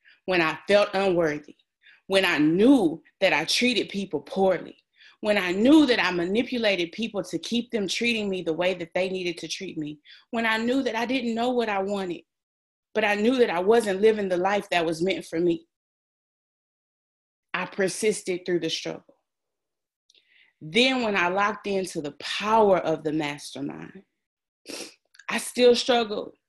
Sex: female